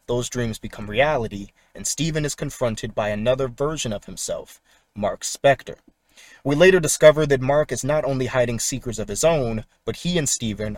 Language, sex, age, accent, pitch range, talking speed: English, male, 30-49, American, 110-145 Hz, 180 wpm